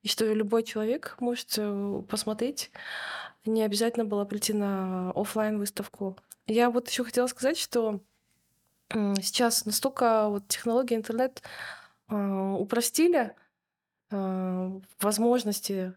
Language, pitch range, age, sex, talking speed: Russian, 195-230 Hz, 20-39, female, 90 wpm